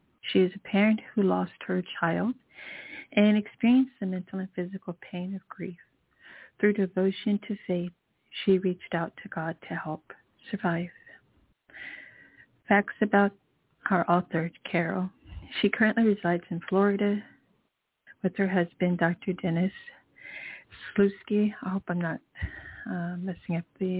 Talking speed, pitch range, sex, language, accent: 135 wpm, 175-210 Hz, female, English, American